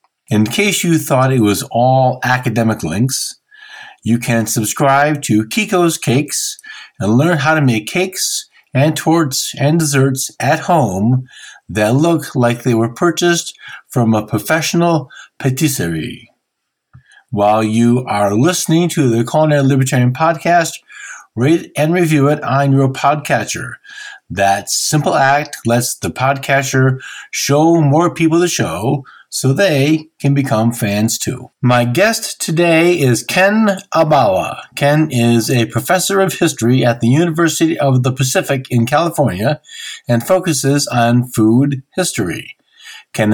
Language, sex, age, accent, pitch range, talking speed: English, male, 50-69, American, 120-165 Hz, 135 wpm